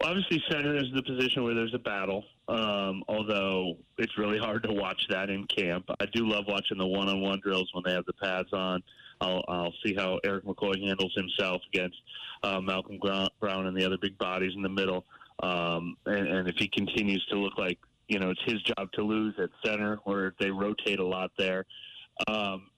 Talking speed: 205 wpm